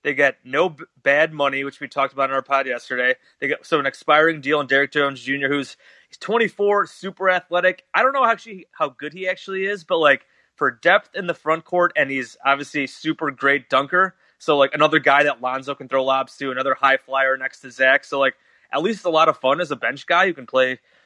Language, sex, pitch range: English, male, 140-170 Hz